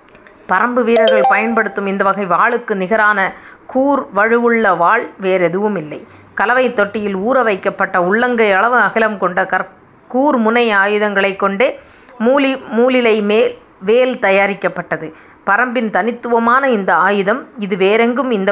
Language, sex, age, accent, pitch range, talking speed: Tamil, female, 30-49, native, 200-245 Hz, 115 wpm